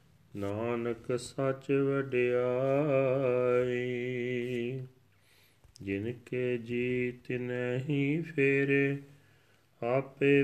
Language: Punjabi